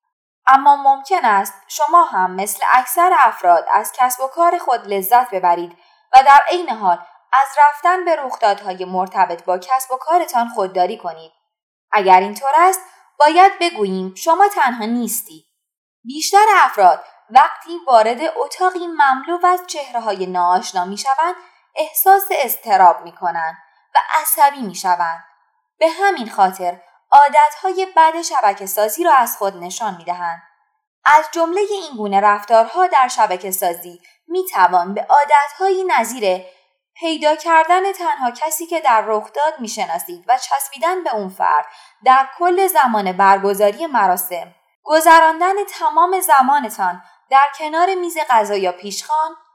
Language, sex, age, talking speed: Persian, female, 20-39, 130 wpm